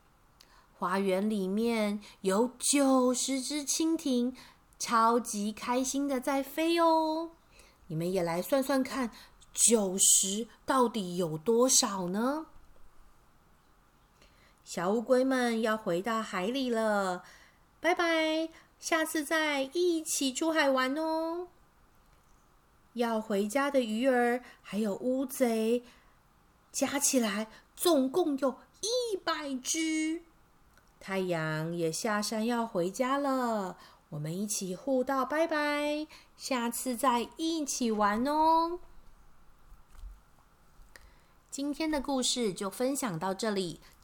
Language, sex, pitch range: Chinese, female, 215-285 Hz